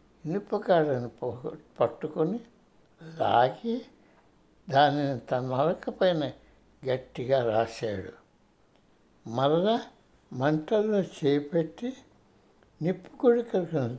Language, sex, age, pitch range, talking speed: Telugu, male, 60-79, 140-195 Hz, 55 wpm